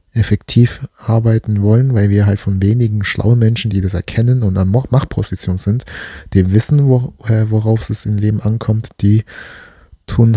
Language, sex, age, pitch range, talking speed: German, male, 20-39, 100-120 Hz, 160 wpm